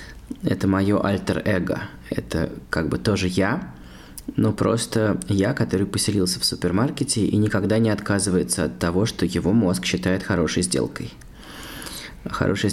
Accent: native